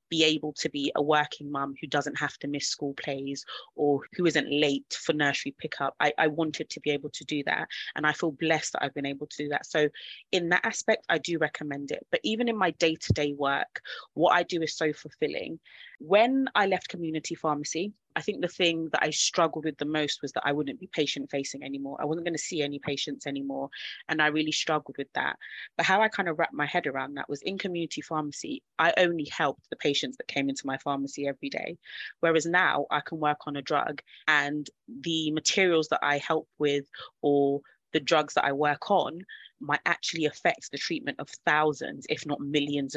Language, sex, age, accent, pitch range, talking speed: English, female, 30-49, British, 145-165 Hz, 220 wpm